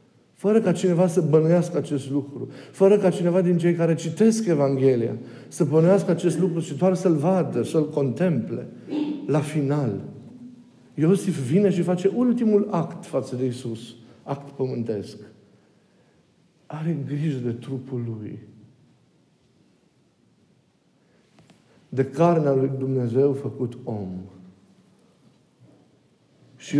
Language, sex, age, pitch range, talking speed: Romanian, male, 50-69, 115-165 Hz, 110 wpm